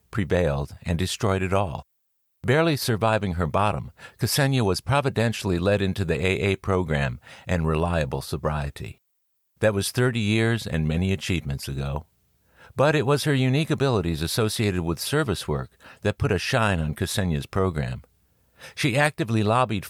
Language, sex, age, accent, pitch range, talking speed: English, male, 60-79, American, 85-115 Hz, 145 wpm